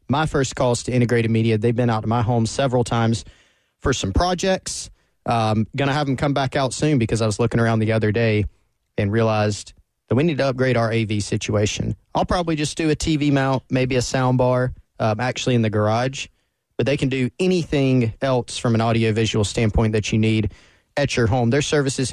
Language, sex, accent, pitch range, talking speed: English, male, American, 110-130 Hz, 210 wpm